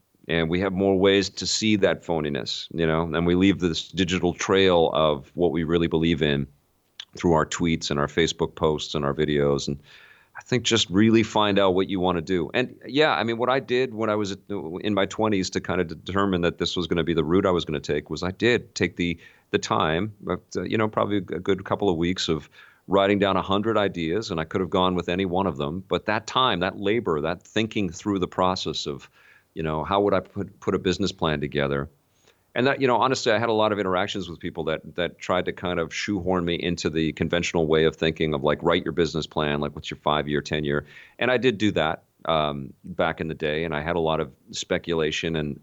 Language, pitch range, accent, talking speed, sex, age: English, 80-100 Hz, American, 245 wpm, male, 40-59